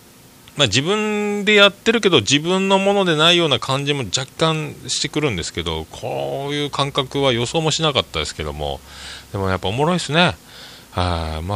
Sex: male